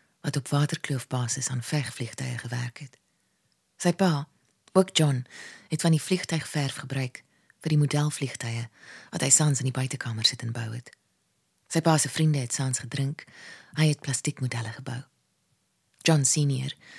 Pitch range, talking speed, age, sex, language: 130-160 Hz, 140 wpm, 20-39, female, English